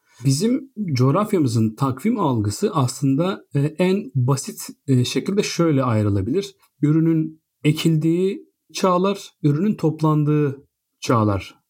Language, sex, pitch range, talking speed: Turkish, male, 120-160 Hz, 80 wpm